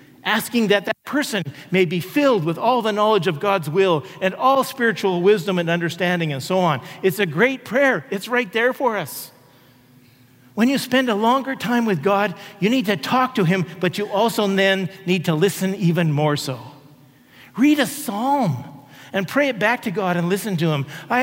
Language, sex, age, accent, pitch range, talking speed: English, male, 50-69, American, 170-240 Hz, 200 wpm